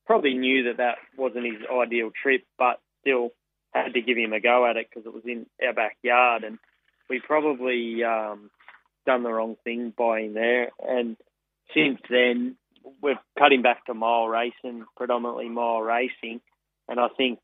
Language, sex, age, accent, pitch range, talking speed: English, male, 20-39, Australian, 115-125 Hz, 175 wpm